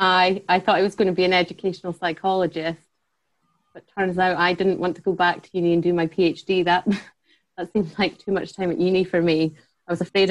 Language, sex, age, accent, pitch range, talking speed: English, female, 30-49, British, 160-185 Hz, 235 wpm